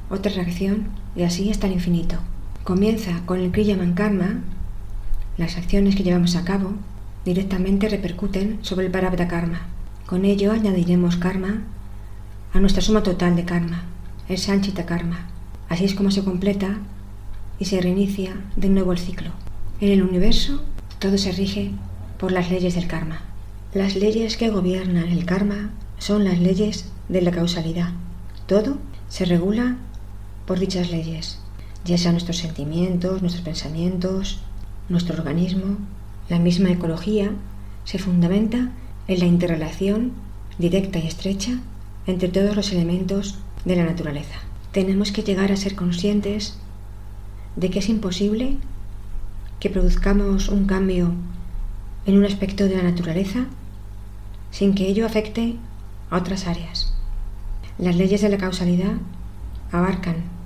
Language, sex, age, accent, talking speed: Spanish, female, 40-59, Spanish, 135 wpm